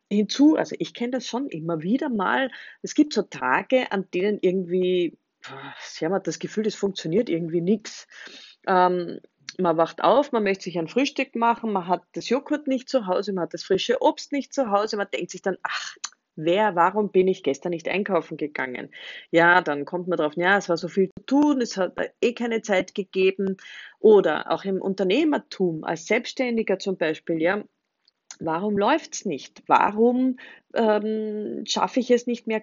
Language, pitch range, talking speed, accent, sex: German, 180-245 Hz, 185 wpm, German, female